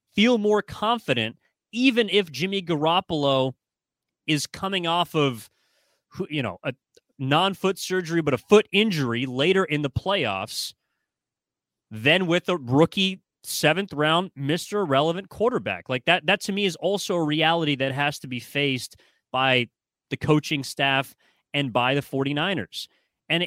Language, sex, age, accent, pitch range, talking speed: English, male, 30-49, American, 135-180 Hz, 145 wpm